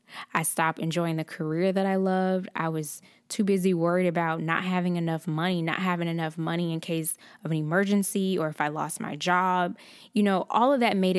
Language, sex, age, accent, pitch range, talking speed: English, female, 10-29, American, 165-195 Hz, 210 wpm